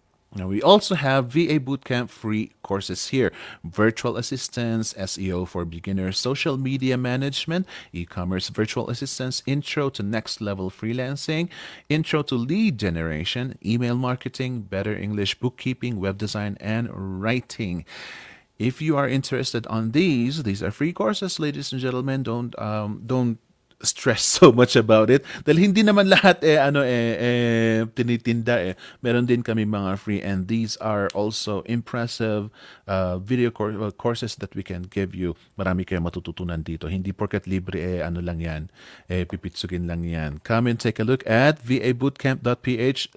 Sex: male